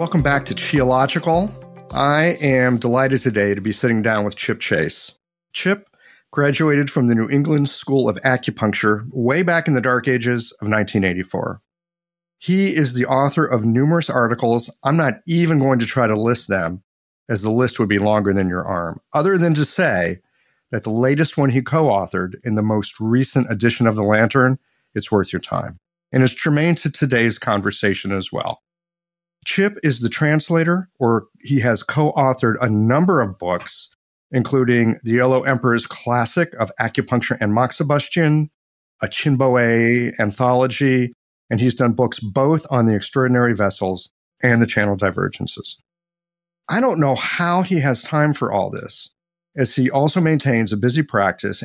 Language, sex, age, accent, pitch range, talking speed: English, male, 40-59, American, 110-150 Hz, 165 wpm